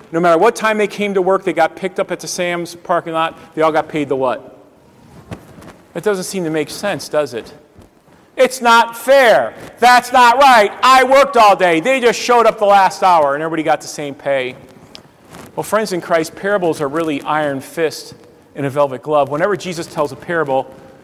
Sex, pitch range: male, 145-200 Hz